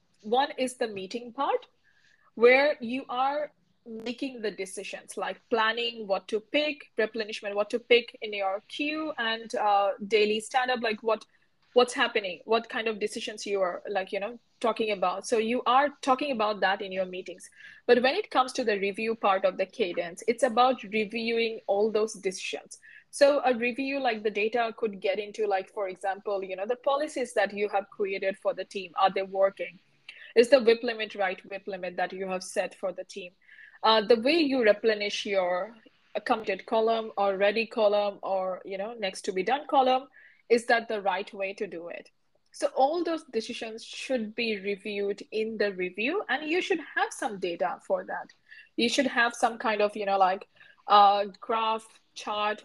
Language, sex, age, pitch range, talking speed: English, female, 20-39, 200-250 Hz, 190 wpm